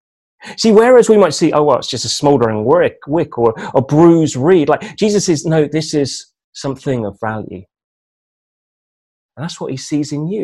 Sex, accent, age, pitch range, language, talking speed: male, British, 30-49, 145-200 Hz, English, 185 wpm